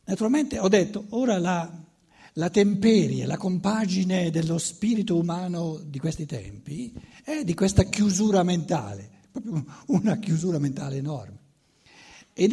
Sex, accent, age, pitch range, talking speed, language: male, native, 60-79, 155-205 Hz, 125 wpm, Italian